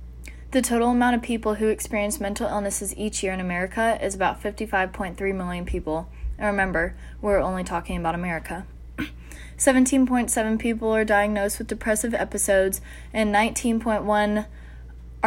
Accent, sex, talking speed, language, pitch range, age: American, female, 135 wpm, English, 185-220 Hz, 20-39